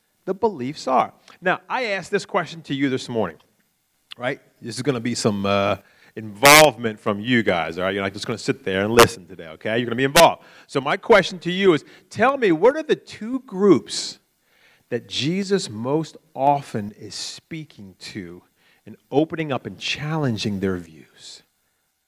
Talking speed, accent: 190 wpm, American